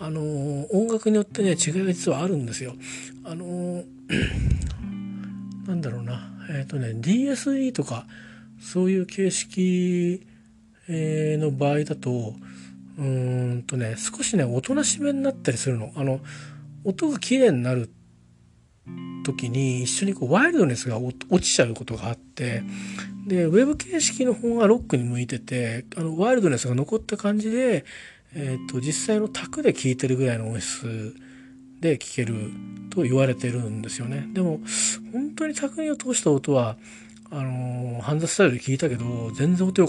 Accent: native